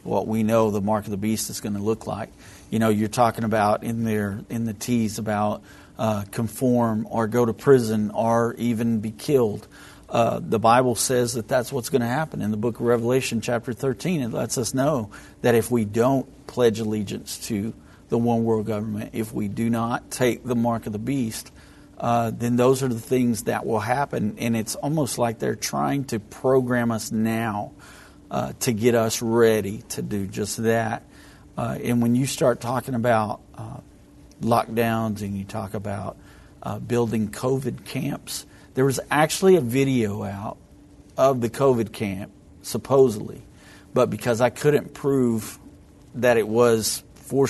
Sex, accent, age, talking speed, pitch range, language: male, American, 50-69, 180 wpm, 110-125 Hz, English